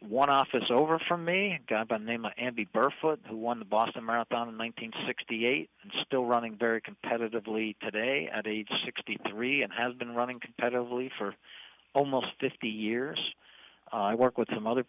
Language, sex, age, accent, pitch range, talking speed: English, male, 50-69, American, 110-135 Hz, 175 wpm